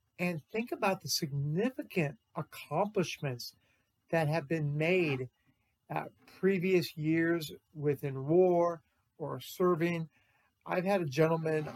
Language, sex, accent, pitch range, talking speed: English, male, American, 140-175 Hz, 100 wpm